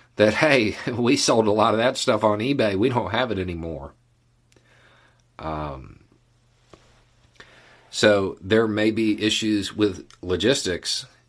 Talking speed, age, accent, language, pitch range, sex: 130 wpm, 40-59, American, English, 90-120 Hz, male